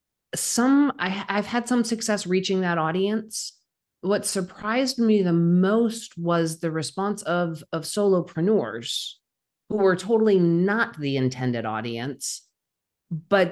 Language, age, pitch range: English, 40-59, 150-195 Hz